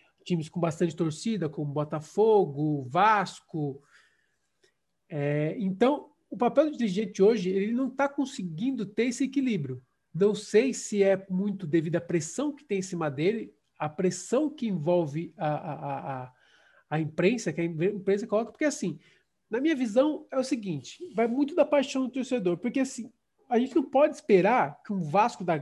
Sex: male